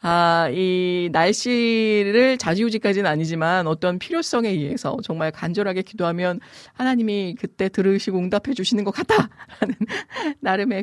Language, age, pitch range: Korean, 40-59, 170-240 Hz